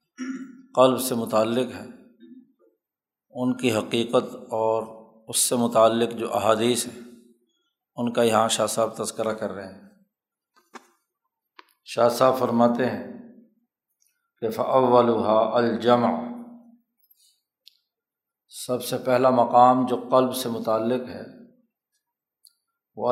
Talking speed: 105 wpm